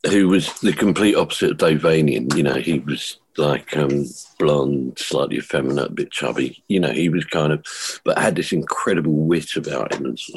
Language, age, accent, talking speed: English, 50-69, British, 195 wpm